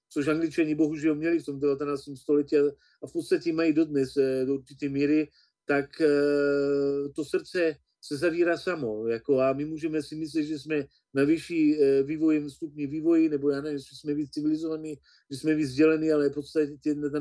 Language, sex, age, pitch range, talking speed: Slovak, male, 40-59, 145-195 Hz, 170 wpm